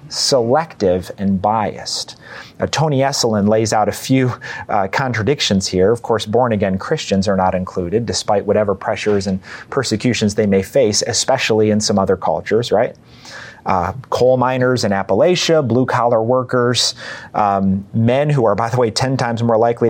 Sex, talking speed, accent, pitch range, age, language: male, 160 wpm, American, 105-135 Hz, 30-49, English